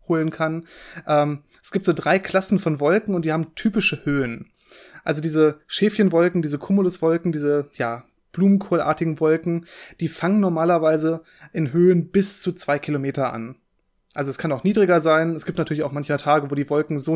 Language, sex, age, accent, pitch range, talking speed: German, male, 20-39, German, 155-185 Hz, 170 wpm